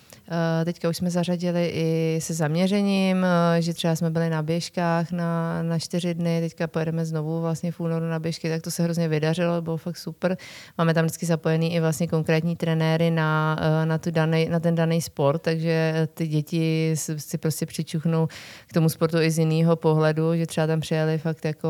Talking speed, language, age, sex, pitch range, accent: 190 wpm, Czech, 20-39, female, 155-165 Hz, native